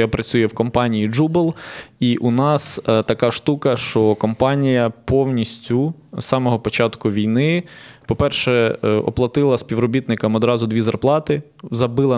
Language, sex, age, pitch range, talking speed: Ukrainian, male, 20-39, 115-135 Hz, 120 wpm